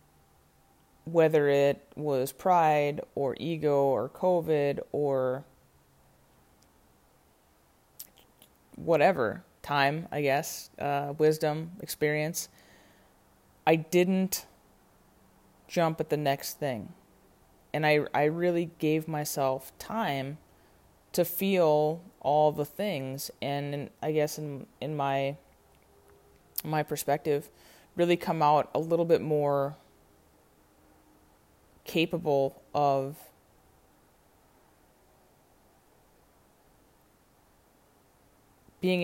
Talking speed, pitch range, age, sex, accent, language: 85 wpm, 100-155 Hz, 20-39, female, American, English